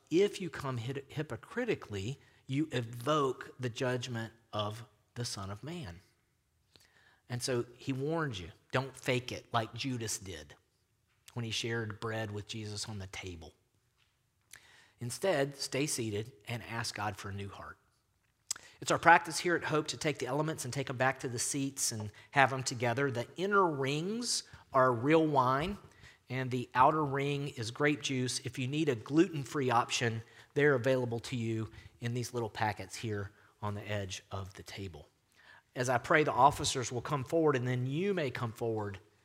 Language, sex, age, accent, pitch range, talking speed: English, male, 40-59, American, 105-135 Hz, 170 wpm